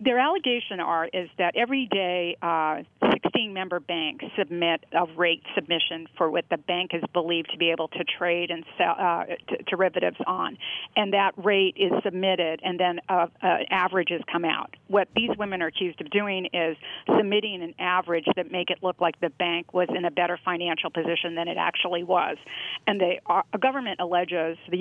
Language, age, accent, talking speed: English, 50-69, American, 185 wpm